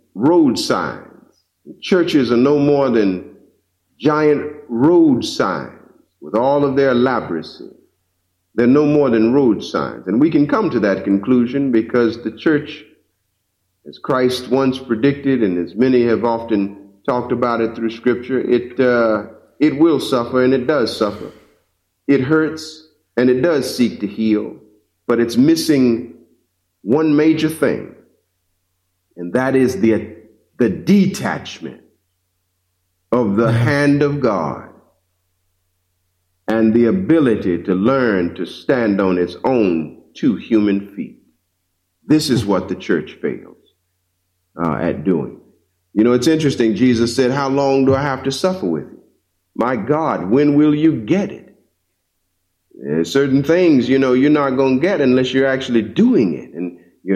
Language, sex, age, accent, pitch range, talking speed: English, male, 50-69, American, 95-145 Hz, 145 wpm